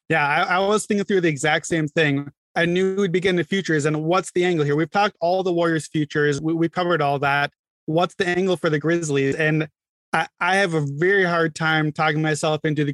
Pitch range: 150-180 Hz